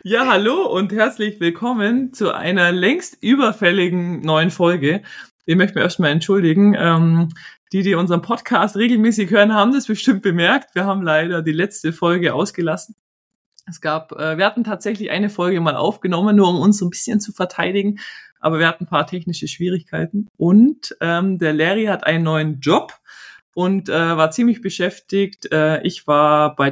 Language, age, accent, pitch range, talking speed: German, 20-39, German, 170-205 Hz, 170 wpm